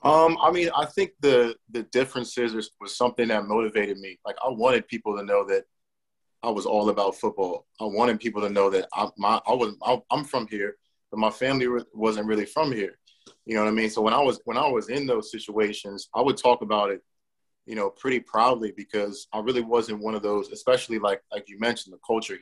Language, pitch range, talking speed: English, 105-145 Hz, 225 wpm